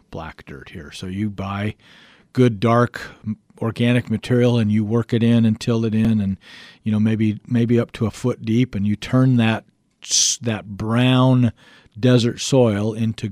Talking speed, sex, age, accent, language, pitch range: 170 wpm, male, 50-69, American, English, 95-115 Hz